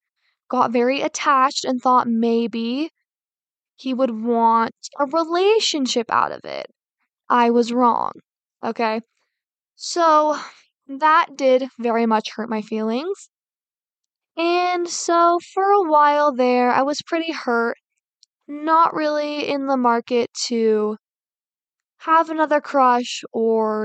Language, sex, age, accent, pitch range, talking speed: English, female, 10-29, American, 240-310 Hz, 115 wpm